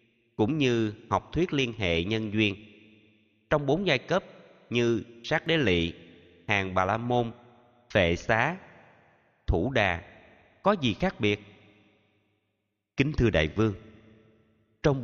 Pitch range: 95-120 Hz